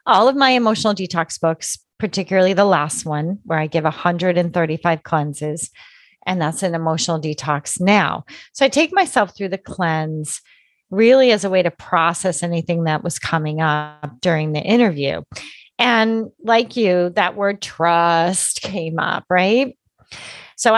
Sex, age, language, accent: female, 30-49, English, American